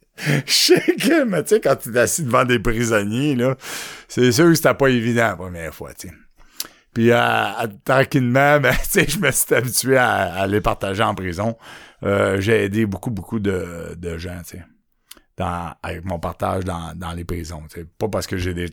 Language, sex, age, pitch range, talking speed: French, male, 50-69, 90-120 Hz, 205 wpm